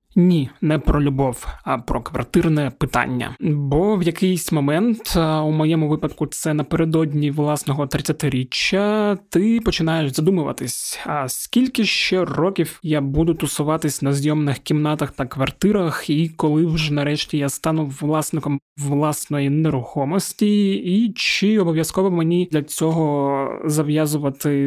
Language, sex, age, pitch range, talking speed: Ukrainian, male, 20-39, 140-165 Hz, 125 wpm